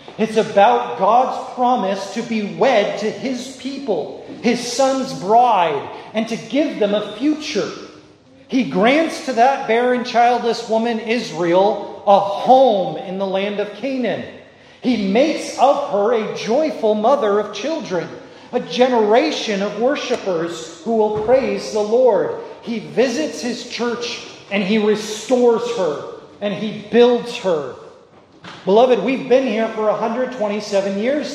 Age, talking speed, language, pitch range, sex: 40-59, 135 wpm, English, 175-245 Hz, male